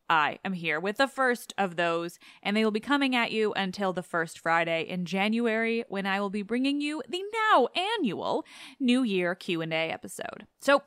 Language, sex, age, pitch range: English, female, 20-39, 180-265 Hz